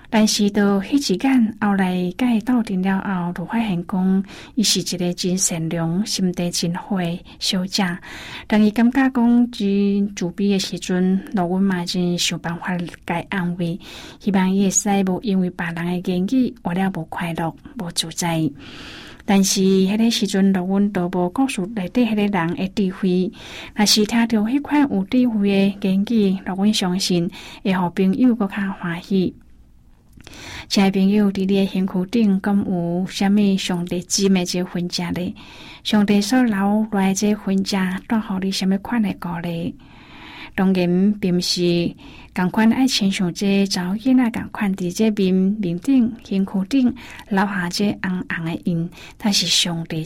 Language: Chinese